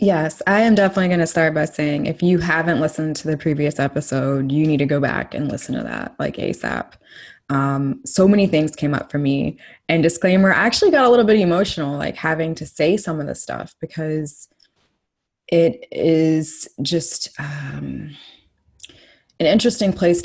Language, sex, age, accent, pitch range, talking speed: English, female, 20-39, American, 140-165 Hz, 180 wpm